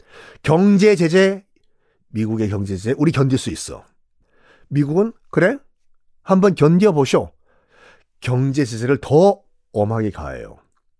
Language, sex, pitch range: Korean, male, 110-185 Hz